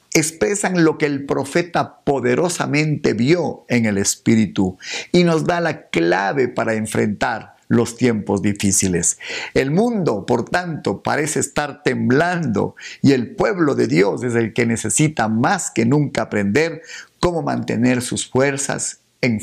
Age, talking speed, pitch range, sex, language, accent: 50-69, 140 wpm, 110-160 Hz, male, Spanish, Mexican